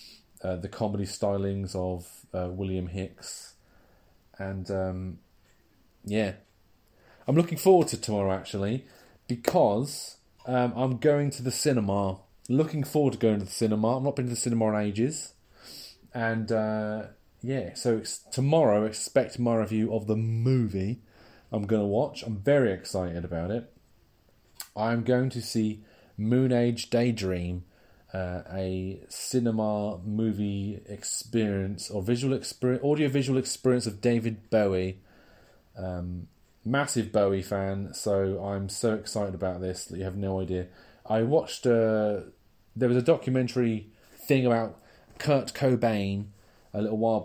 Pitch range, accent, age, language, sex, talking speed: 95-120 Hz, British, 30-49, English, male, 135 wpm